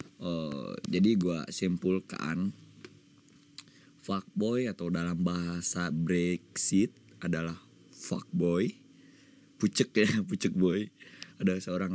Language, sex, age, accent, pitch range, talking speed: Indonesian, male, 20-39, native, 85-110 Hz, 85 wpm